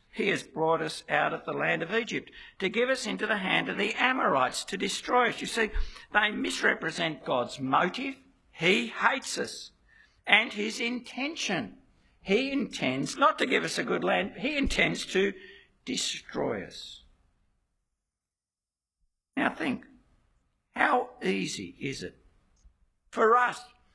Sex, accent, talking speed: male, Australian, 140 wpm